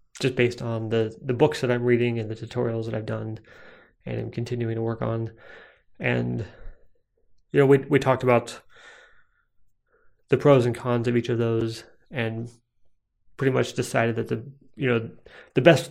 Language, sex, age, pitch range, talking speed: English, male, 30-49, 115-130 Hz, 175 wpm